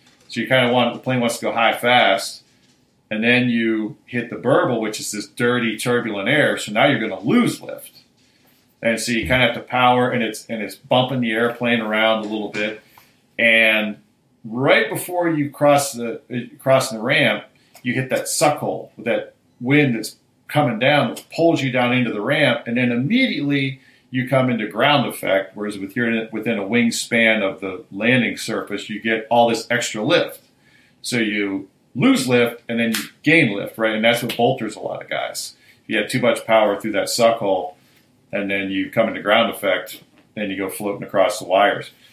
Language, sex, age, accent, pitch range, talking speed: English, male, 40-59, American, 110-130 Hz, 200 wpm